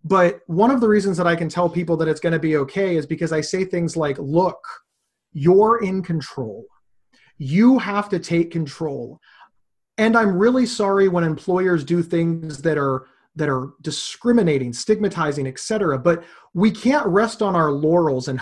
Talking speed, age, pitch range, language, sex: 180 wpm, 30-49, 150-200 Hz, English, male